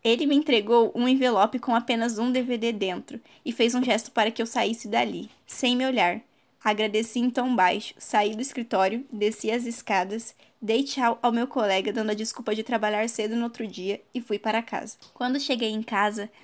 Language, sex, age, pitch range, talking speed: Portuguese, female, 10-29, 215-245 Hz, 195 wpm